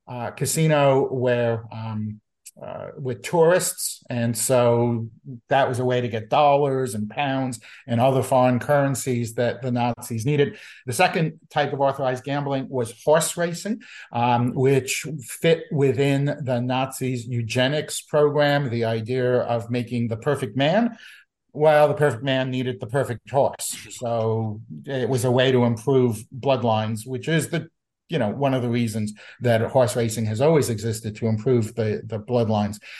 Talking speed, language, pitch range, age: 155 wpm, English, 120-145 Hz, 50-69